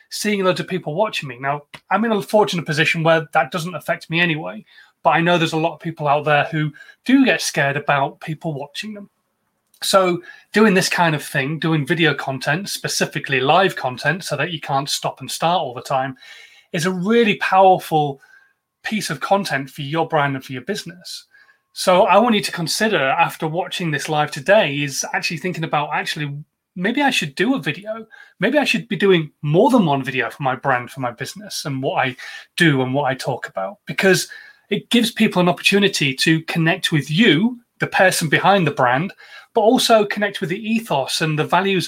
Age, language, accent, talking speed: 30-49, English, British, 205 wpm